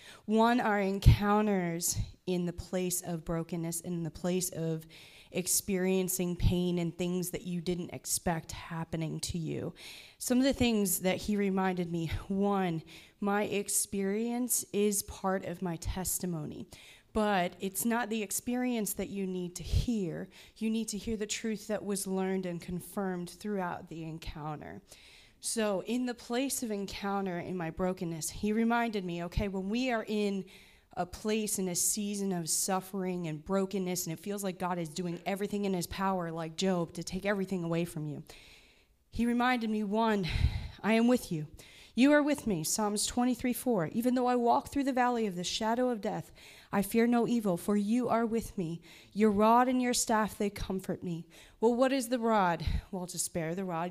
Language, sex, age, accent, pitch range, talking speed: English, female, 20-39, American, 180-225 Hz, 180 wpm